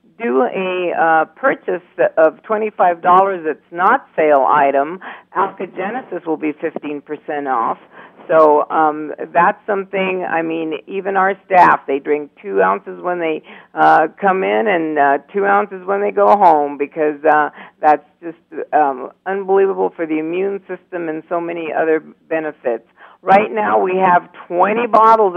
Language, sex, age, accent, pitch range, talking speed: English, female, 50-69, American, 155-195 Hz, 145 wpm